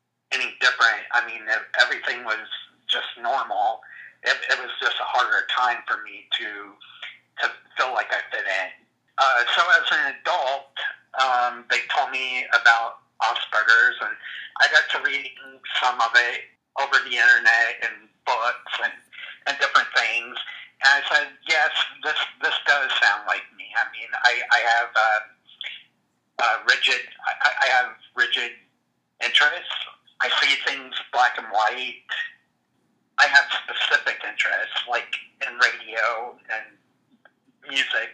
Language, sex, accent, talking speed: English, male, American, 145 wpm